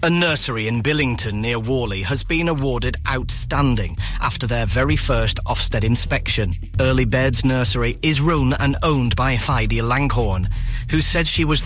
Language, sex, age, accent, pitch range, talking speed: English, male, 30-49, British, 105-140 Hz, 155 wpm